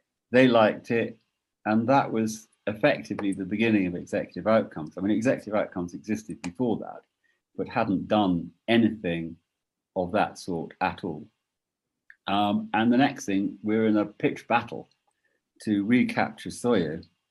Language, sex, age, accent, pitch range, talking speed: English, male, 50-69, British, 90-115 Hz, 140 wpm